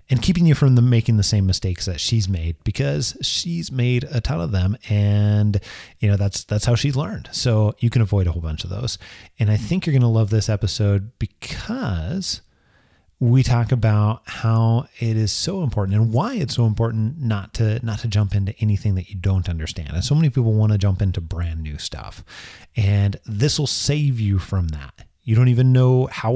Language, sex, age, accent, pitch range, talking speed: English, male, 30-49, American, 95-125 Hz, 210 wpm